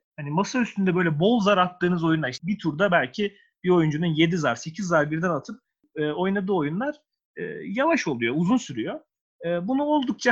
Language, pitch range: Turkish, 160-220 Hz